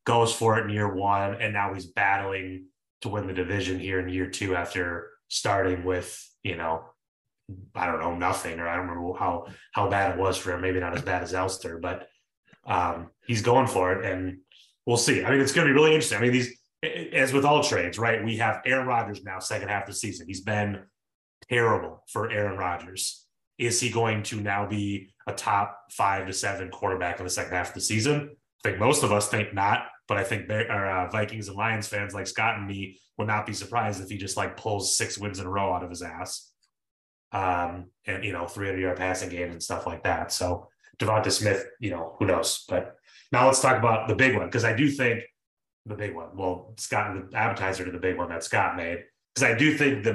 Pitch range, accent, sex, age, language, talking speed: 95-115 Hz, American, male, 30-49, English, 230 wpm